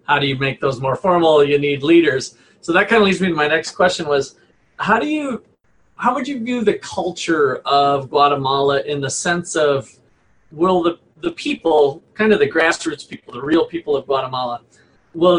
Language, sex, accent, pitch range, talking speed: English, male, American, 145-200 Hz, 200 wpm